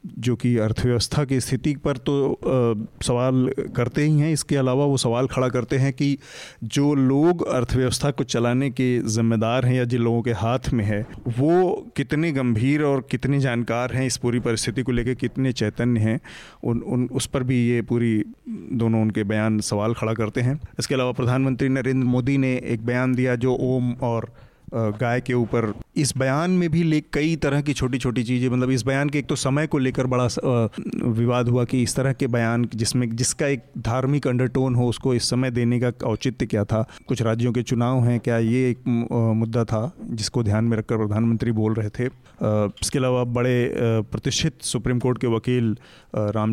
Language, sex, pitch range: Hindi, male, 115-135 Hz